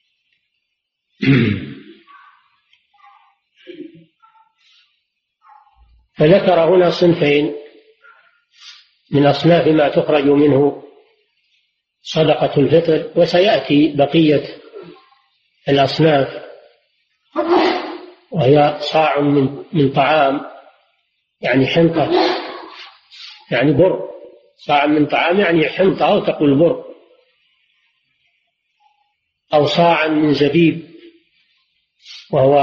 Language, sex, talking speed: Arabic, male, 65 wpm